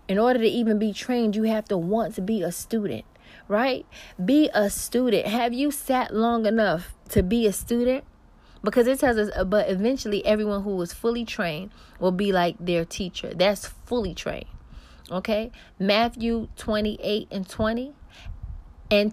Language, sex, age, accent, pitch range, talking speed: English, female, 20-39, American, 180-220 Hz, 160 wpm